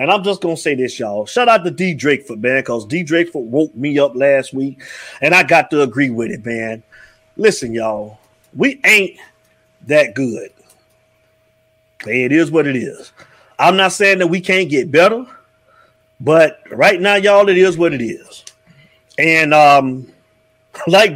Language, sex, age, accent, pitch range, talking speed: English, male, 30-49, American, 135-195 Hz, 175 wpm